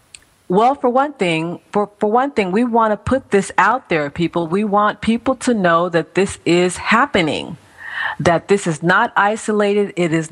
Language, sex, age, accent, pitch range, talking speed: English, female, 40-59, American, 165-210 Hz, 185 wpm